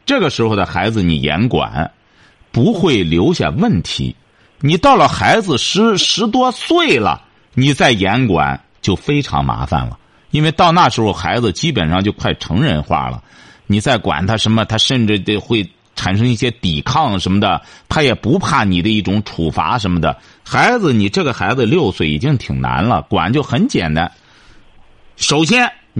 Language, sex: Chinese, male